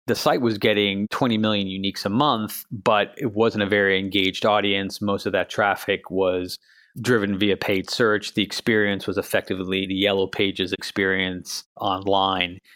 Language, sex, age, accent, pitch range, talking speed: English, male, 30-49, American, 95-105 Hz, 160 wpm